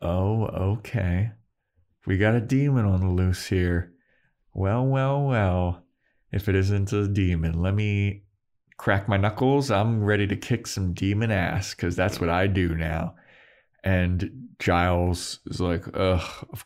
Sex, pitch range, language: male, 95-125 Hz, English